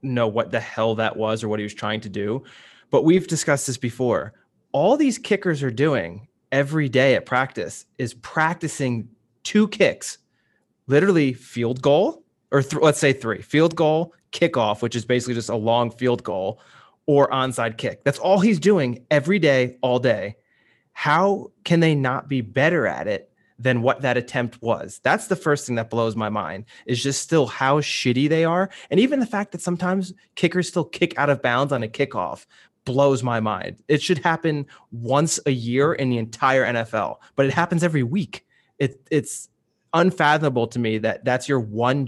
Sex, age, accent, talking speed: male, 20-39, American, 185 wpm